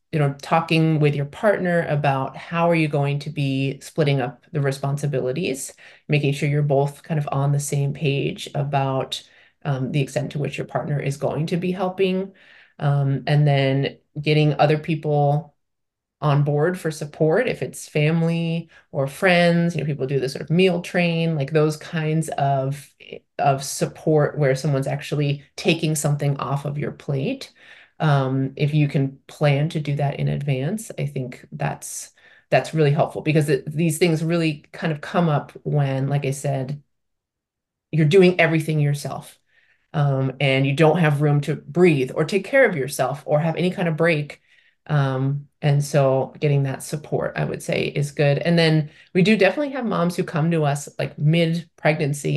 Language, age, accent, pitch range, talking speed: English, 30-49, American, 140-165 Hz, 180 wpm